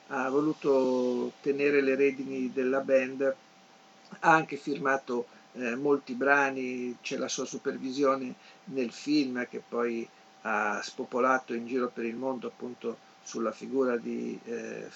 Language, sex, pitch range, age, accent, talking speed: Italian, male, 125-150 Hz, 50-69, native, 130 wpm